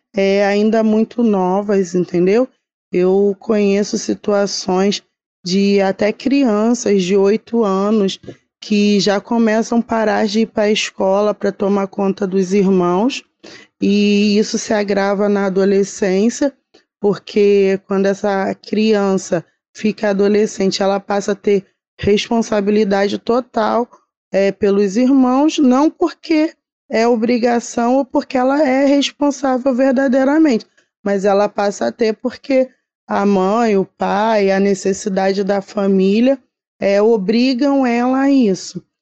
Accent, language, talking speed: Brazilian, Portuguese, 120 wpm